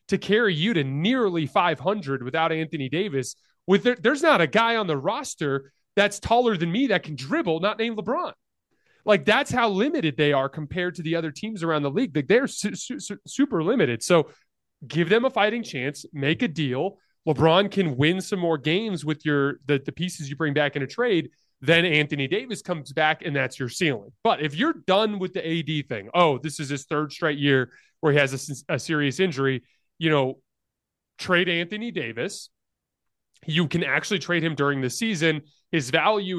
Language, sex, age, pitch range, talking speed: English, male, 30-49, 140-190 Hz, 200 wpm